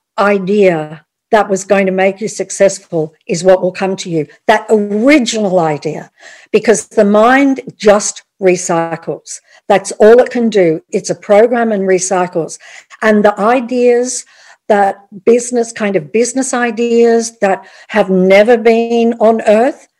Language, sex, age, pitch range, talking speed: English, female, 60-79, 180-235 Hz, 140 wpm